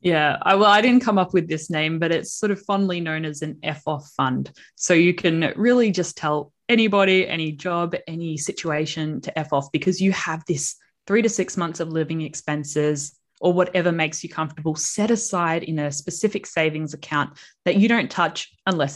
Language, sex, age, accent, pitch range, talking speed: English, female, 20-39, Australian, 150-190 Hz, 190 wpm